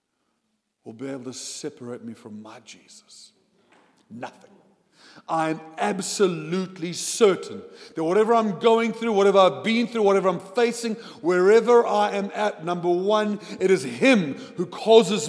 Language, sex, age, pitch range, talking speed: English, male, 50-69, 175-230 Hz, 145 wpm